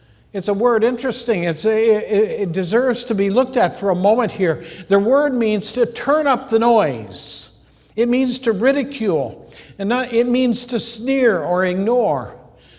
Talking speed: 155 wpm